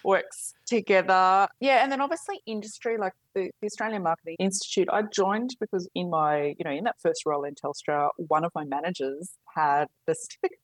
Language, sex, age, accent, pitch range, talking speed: English, female, 20-39, Australian, 140-175 Hz, 180 wpm